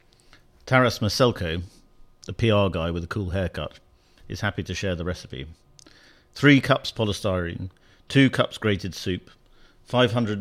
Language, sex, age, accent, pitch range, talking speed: English, male, 50-69, British, 90-115 Hz, 135 wpm